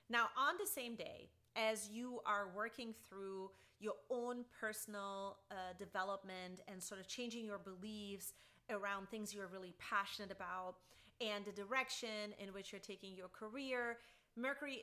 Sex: female